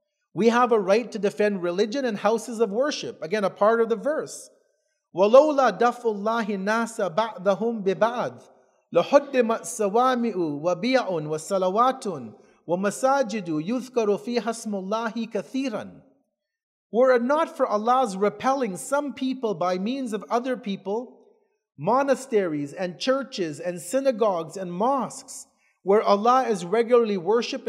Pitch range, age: 205-260 Hz, 40-59